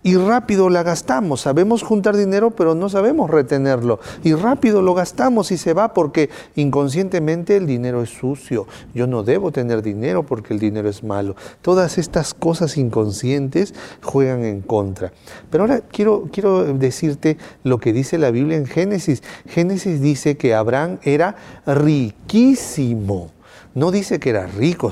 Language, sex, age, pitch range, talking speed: English, male, 40-59, 115-165 Hz, 155 wpm